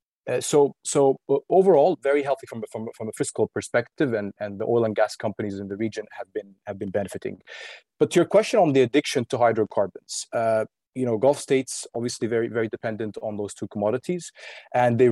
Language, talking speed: English, 215 wpm